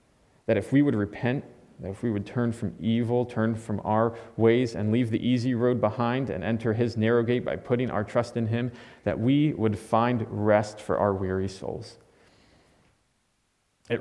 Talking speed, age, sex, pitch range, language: 180 wpm, 30-49, male, 100-120 Hz, English